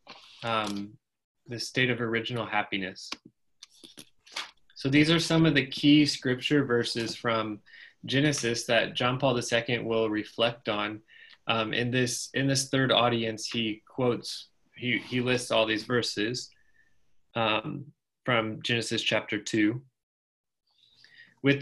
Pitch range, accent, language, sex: 115-135 Hz, American, English, male